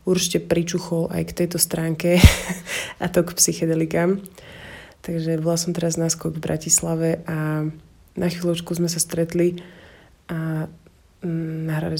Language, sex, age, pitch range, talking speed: Slovak, female, 20-39, 160-175 Hz, 125 wpm